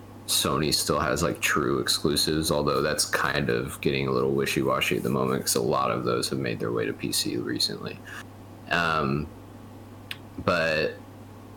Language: English